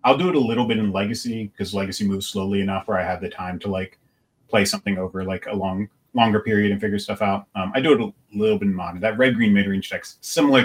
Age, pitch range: 30-49, 95-115 Hz